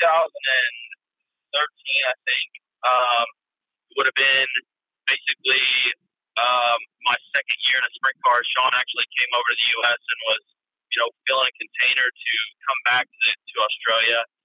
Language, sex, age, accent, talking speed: English, male, 30-49, American, 150 wpm